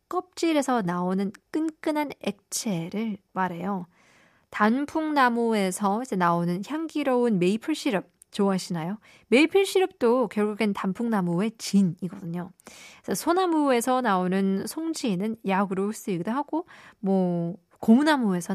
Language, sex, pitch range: Korean, female, 185-255 Hz